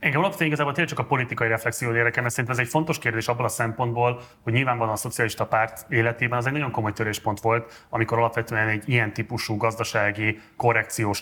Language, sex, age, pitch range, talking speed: Hungarian, male, 30-49, 110-125 Hz, 200 wpm